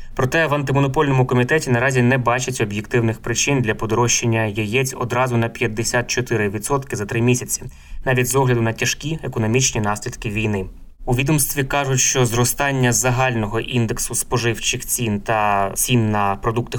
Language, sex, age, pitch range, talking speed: Ukrainian, male, 20-39, 115-130 Hz, 140 wpm